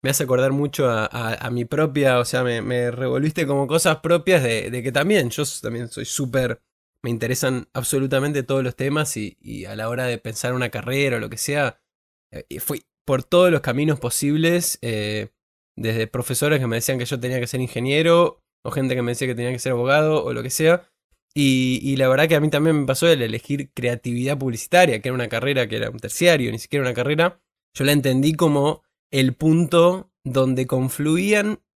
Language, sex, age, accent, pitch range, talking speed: Spanish, male, 20-39, Argentinian, 125-150 Hz, 205 wpm